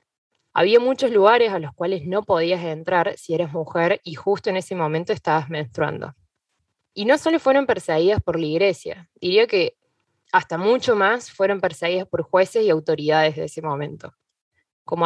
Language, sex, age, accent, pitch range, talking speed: Spanish, female, 20-39, Argentinian, 165-215 Hz, 165 wpm